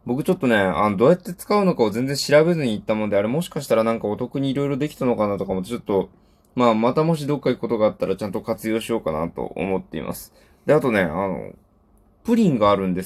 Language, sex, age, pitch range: Japanese, male, 20-39, 95-150 Hz